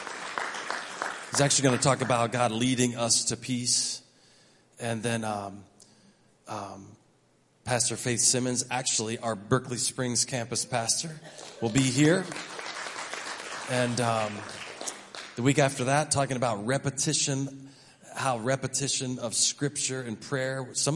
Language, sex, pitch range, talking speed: English, male, 115-145 Hz, 120 wpm